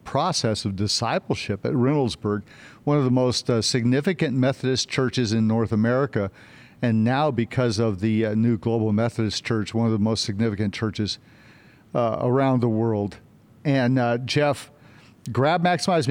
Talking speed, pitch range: 155 wpm, 115-145 Hz